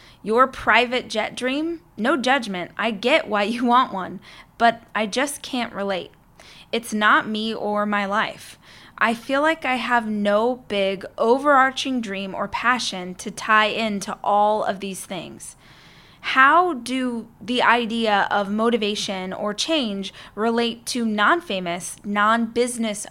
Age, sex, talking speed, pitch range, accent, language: 20-39, female, 140 wpm, 200-255 Hz, American, English